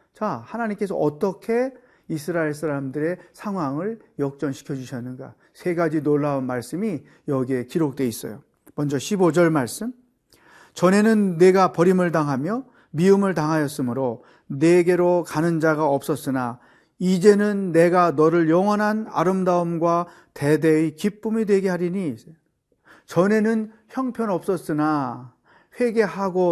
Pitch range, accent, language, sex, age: 150-205 Hz, native, Korean, male, 40-59